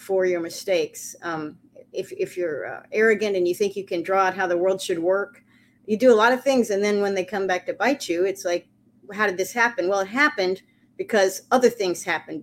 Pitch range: 185-230 Hz